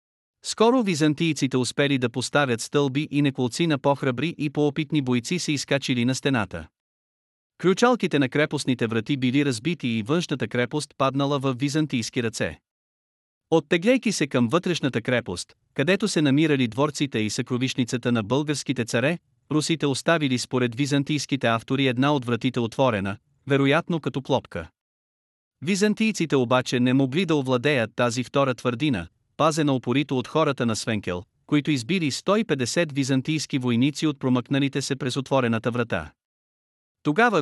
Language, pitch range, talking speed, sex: Bulgarian, 125-150 Hz, 135 wpm, male